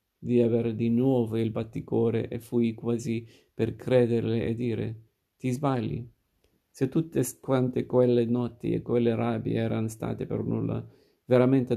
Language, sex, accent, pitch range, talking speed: Italian, male, native, 115-125 Hz, 145 wpm